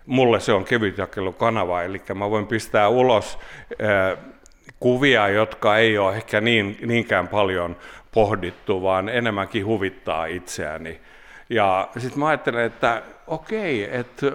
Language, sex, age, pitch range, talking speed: Finnish, male, 60-79, 100-125 Hz, 125 wpm